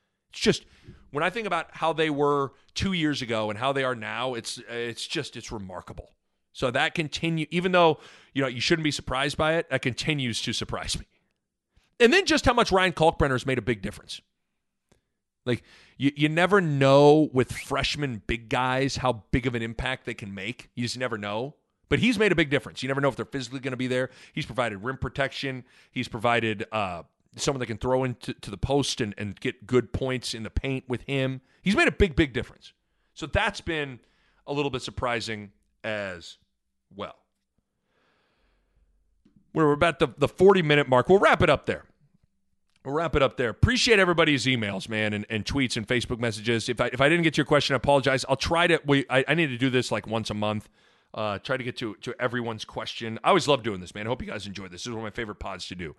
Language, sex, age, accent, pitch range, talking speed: English, male, 40-59, American, 115-145 Hz, 225 wpm